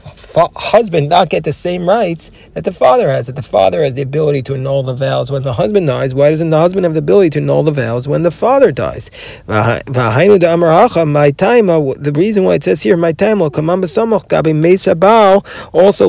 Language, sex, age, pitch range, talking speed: English, male, 40-59, 140-185 Hz, 190 wpm